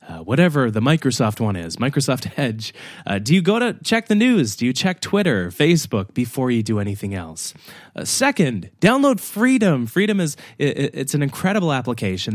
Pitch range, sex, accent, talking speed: 105-155 Hz, male, American, 180 wpm